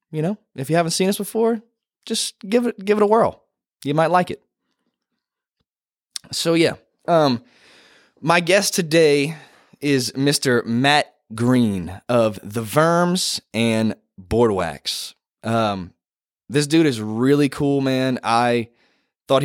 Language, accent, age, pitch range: English, American, 20-39, 110-160 Hz